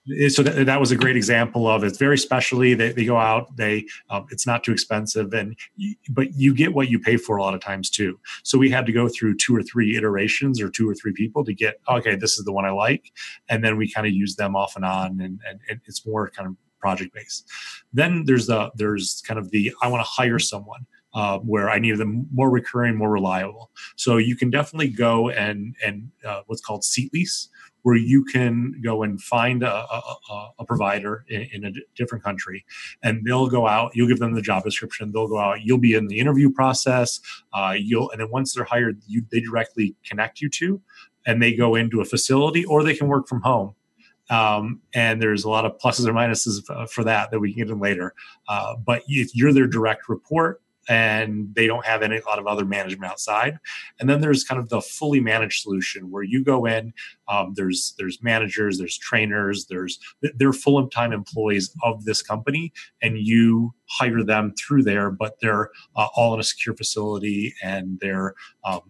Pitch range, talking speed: 105-125 Hz, 215 wpm